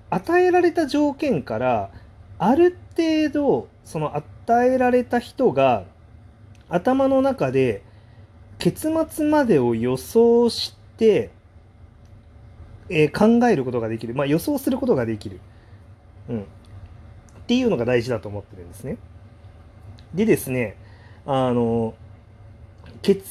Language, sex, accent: Japanese, male, native